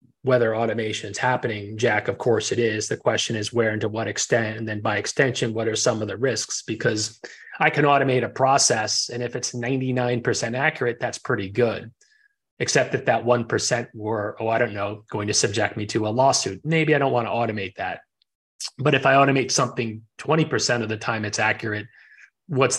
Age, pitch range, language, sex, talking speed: 30-49, 110-120 Hz, English, male, 200 wpm